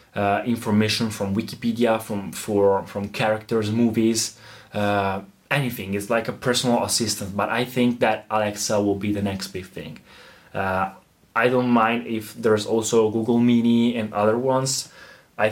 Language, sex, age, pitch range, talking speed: Italian, male, 20-39, 105-120 Hz, 155 wpm